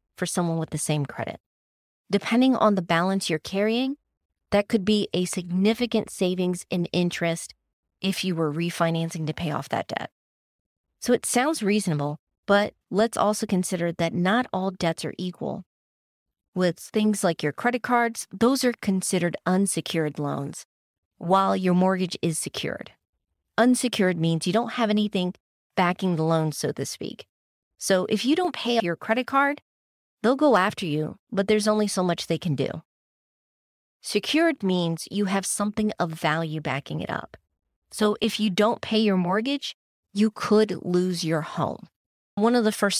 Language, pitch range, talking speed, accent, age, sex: English, 165-215 Hz, 165 wpm, American, 30-49, female